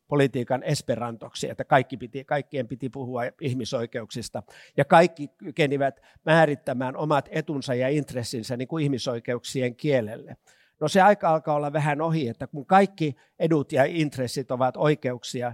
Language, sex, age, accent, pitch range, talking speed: Finnish, male, 50-69, native, 125-150 Hz, 140 wpm